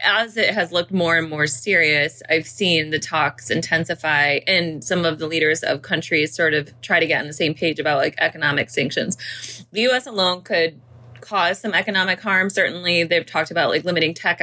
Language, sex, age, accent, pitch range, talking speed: English, female, 20-39, American, 155-190 Hz, 200 wpm